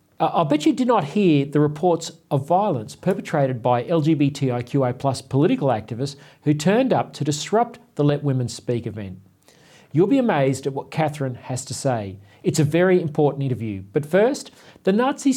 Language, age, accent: English, 40-59, Australian